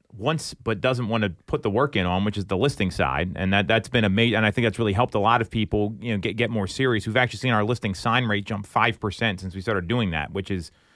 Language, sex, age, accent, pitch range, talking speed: English, male, 30-49, American, 100-125 Hz, 290 wpm